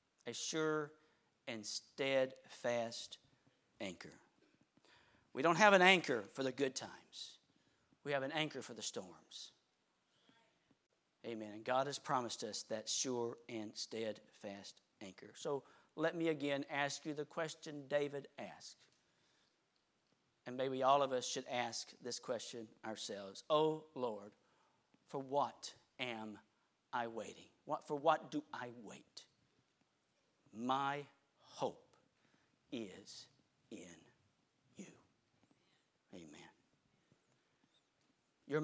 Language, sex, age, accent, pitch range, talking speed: English, male, 40-59, American, 115-150 Hz, 110 wpm